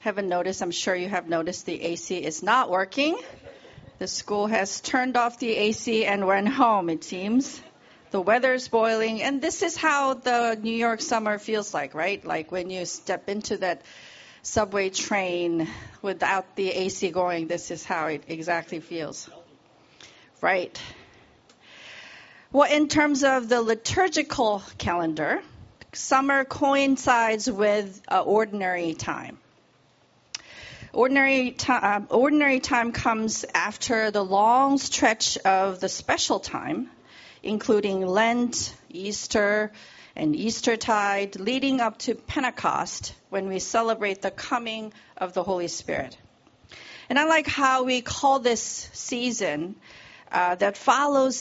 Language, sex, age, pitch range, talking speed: English, female, 40-59, 190-250 Hz, 135 wpm